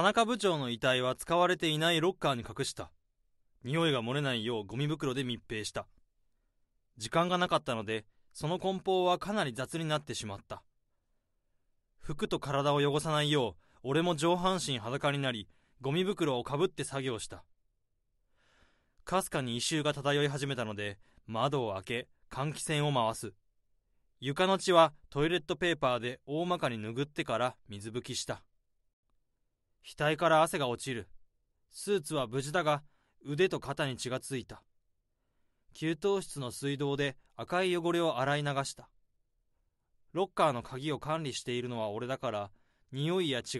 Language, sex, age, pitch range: Japanese, male, 20-39, 120-160 Hz